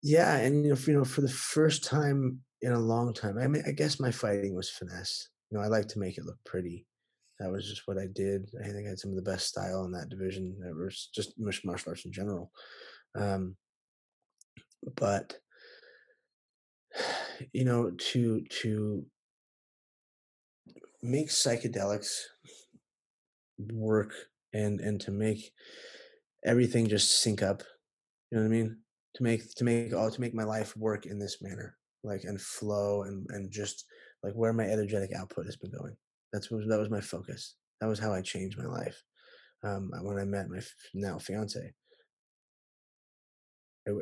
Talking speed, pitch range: 175 wpm, 95-115 Hz